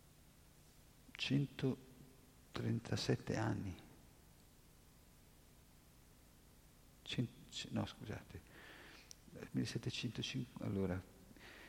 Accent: native